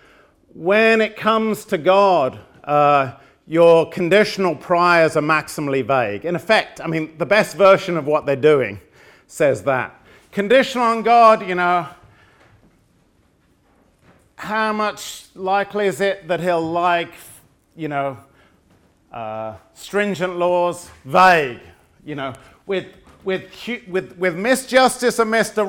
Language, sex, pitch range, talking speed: English, male, 140-190 Hz, 125 wpm